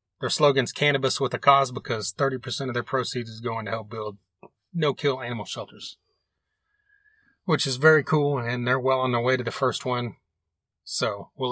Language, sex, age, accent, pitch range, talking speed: English, male, 30-49, American, 120-145 Hz, 180 wpm